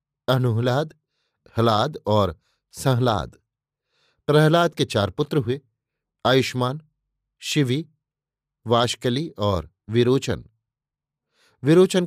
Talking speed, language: 75 wpm, Hindi